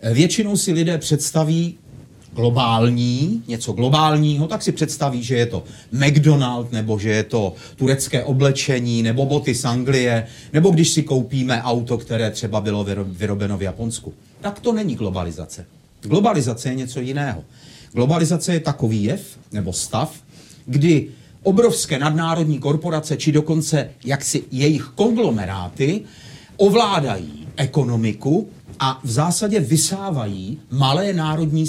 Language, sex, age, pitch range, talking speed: Czech, male, 40-59, 115-155 Hz, 125 wpm